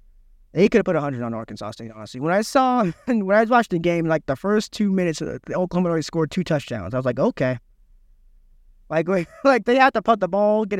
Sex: male